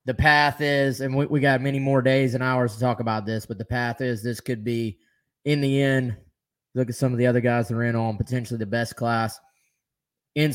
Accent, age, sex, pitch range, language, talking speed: American, 20-39, male, 115-140 Hz, English, 240 wpm